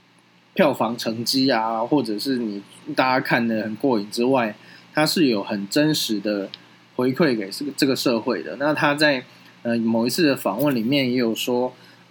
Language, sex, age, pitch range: Chinese, male, 20-39, 105-140 Hz